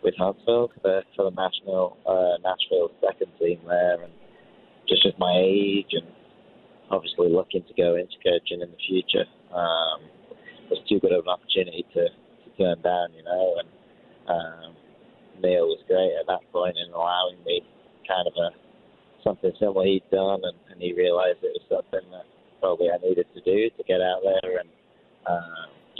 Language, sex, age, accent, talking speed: English, male, 30-49, British, 175 wpm